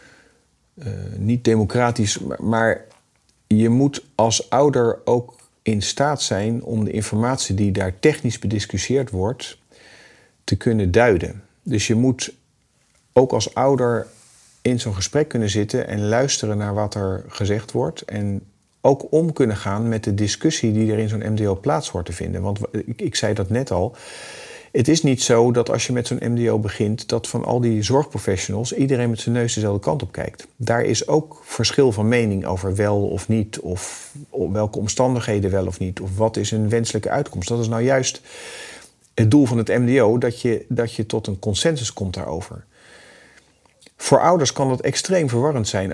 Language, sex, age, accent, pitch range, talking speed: Dutch, male, 50-69, Dutch, 105-125 Hz, 180 wpm